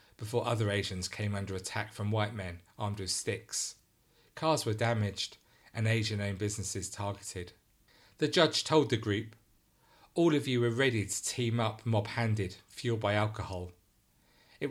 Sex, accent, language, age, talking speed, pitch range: male, British, English, 40-59, 160 wpm, 100-115 Hz